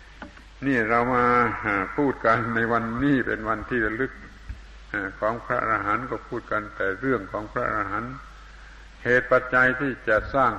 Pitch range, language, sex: 105-125 Hz, Thai, male